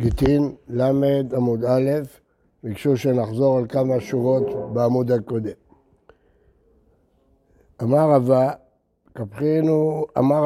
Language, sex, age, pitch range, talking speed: Hebrew, male, 60-79, 130-165 Hz, 85 wpm